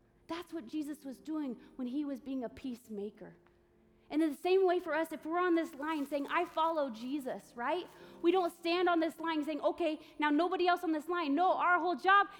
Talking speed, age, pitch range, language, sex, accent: 225 wpm, 30-49, 275-350 Hz, English, female, American